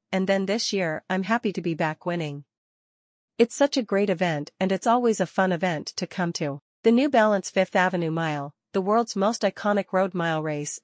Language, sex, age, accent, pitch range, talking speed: English, female, 40-59, American, 165-205 Hz, 205 wpm